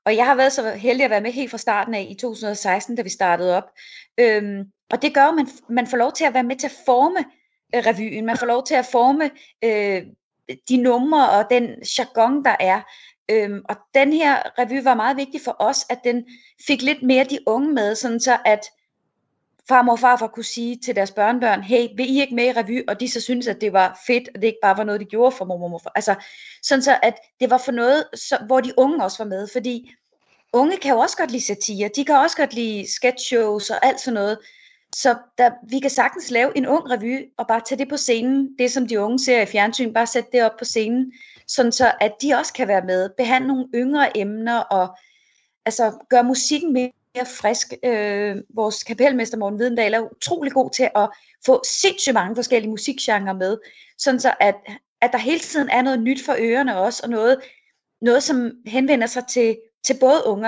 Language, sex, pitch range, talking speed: Danish, female, 215-265 Hz, 215 wpm